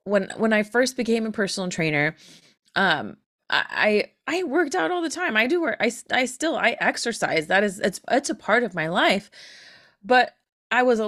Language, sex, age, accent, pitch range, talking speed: English, female, 20-39, American, 175-230 Hz, 200 wpm